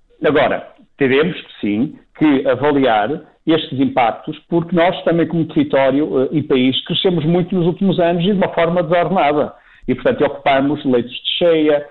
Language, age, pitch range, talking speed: Portuguese, 50-69, 130-170 Hz, 150 wpm